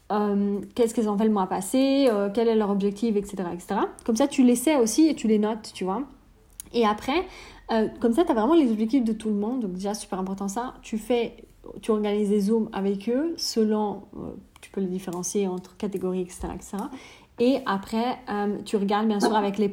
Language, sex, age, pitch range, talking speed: French, female, 30-49, 205-245 Hz, 220 wpm